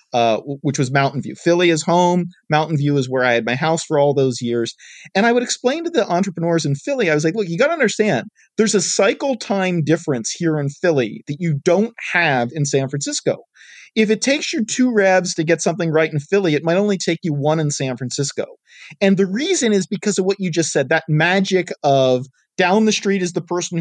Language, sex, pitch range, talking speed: English, male, 150-195 Hz, 230 wpm